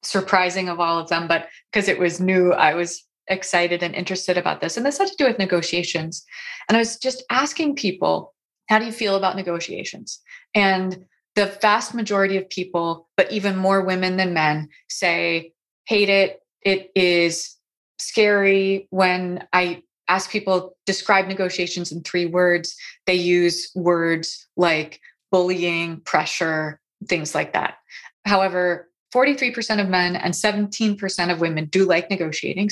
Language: English